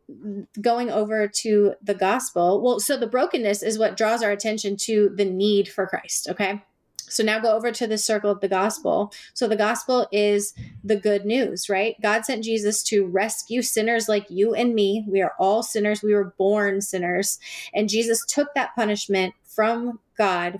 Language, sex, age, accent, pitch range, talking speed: English, female, 30-49, American, 195-220 Hz, 185 wpm